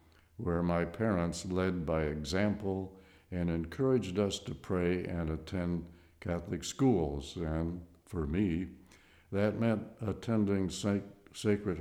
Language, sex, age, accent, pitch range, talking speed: English, male, 60-79, American, 85-100 Hz, 110 wpm